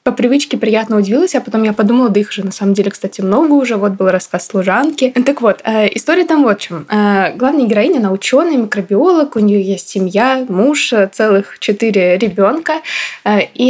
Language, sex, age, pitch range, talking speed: Russian, female, 20-39, 195-240 Hz, 185 wpm